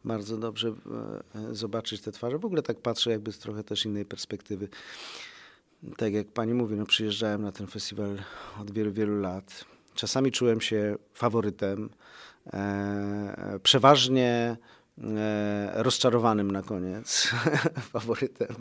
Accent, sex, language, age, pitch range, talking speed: native, male, Polish, 40-59, 100-120 Hz, 120 wpm